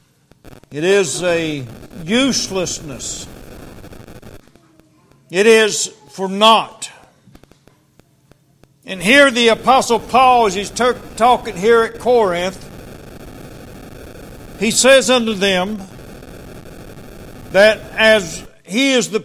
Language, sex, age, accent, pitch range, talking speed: English, male, 60-79, American, 140-220 Hz, 85 wpm